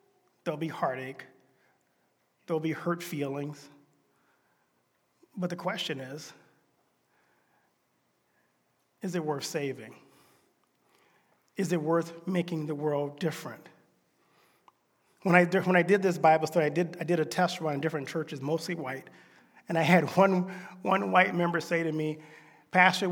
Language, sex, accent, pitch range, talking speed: English, male, American, 155-195 Hz, 130 wpm